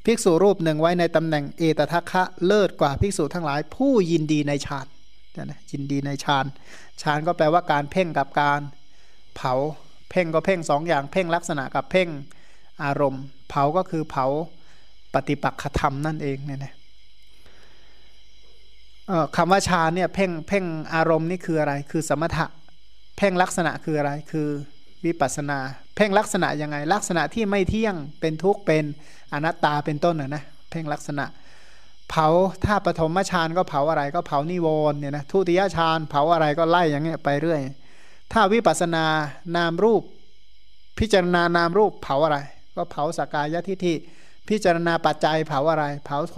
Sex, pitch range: male, 145-175 Hz